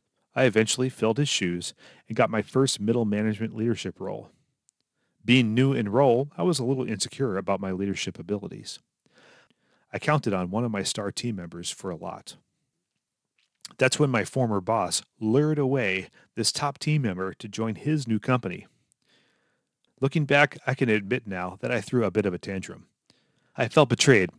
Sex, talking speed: male, 175 wpm